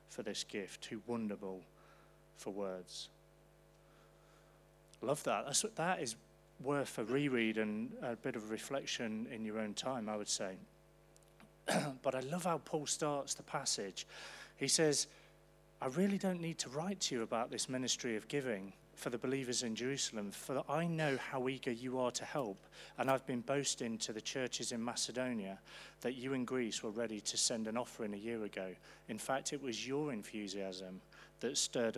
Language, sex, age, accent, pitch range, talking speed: English, male, 30-49, British, 115-145 Hz, 175 wpm